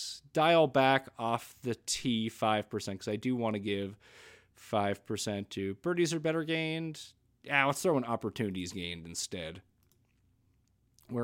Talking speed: 150 wpm